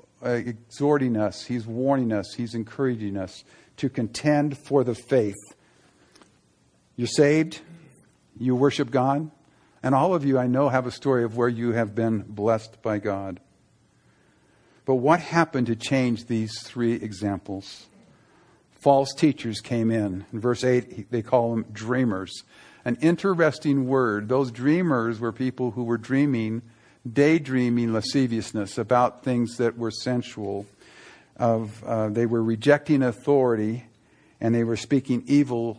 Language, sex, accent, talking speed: English, male, American, 140 wpm